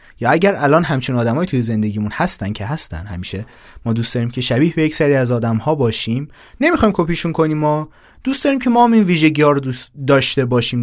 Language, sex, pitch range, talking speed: Persian, male, 115-185 Hz, 205 wpm